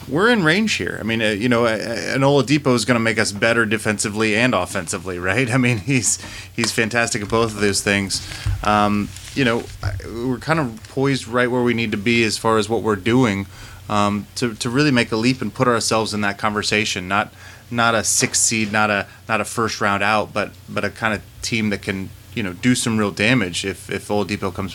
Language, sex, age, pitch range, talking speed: English, male, 30-49, 100-120 Hz, 225 wpm